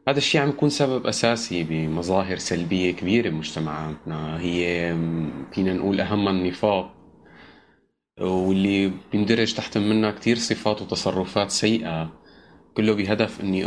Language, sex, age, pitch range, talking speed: Arabic, male, 20-39, 90-110 Hz, 115 wpm